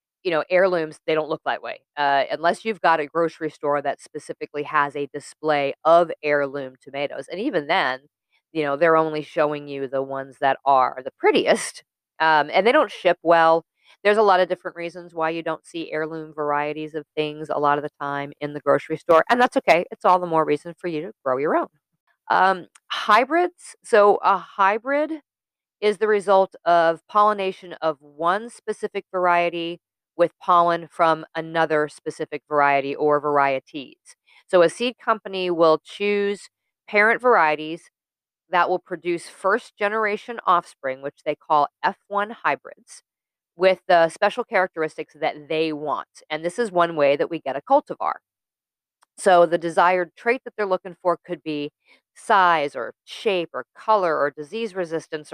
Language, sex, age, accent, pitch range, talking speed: English, female, 40-59, American, 150-190 Hz, 170 wpm